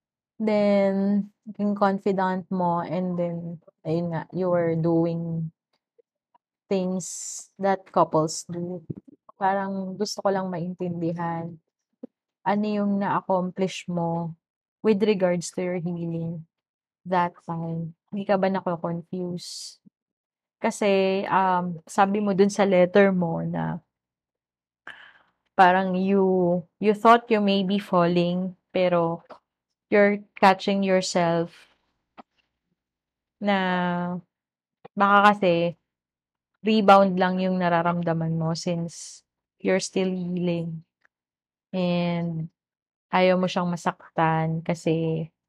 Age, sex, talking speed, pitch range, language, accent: 20-39, female, 100 wpm, 170-200 Hz, Filipino, native